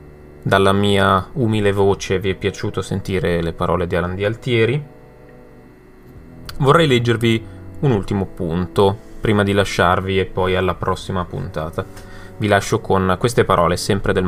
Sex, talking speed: male, 145 wpm